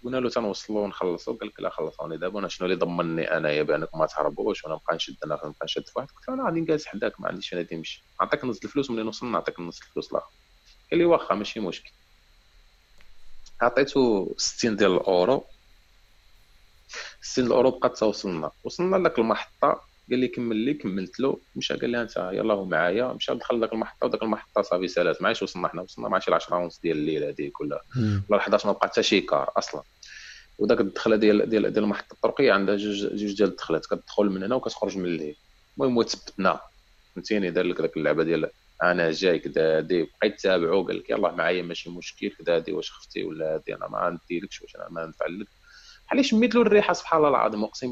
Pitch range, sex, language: 90-125 Hz, male, Arabic